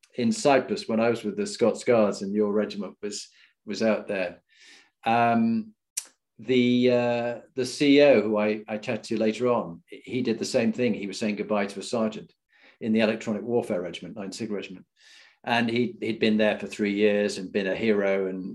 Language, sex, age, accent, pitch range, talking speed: English, male, 40-59, British, 105-140 Hz, 195 wpm